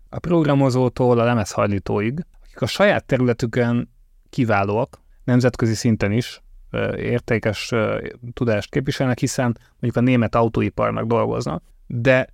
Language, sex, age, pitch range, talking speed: Hungarian, male, 30-49, 105-130 Hz, 115 wpm